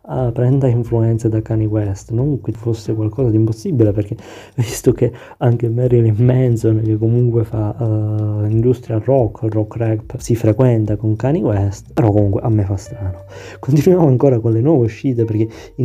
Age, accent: 20-39, native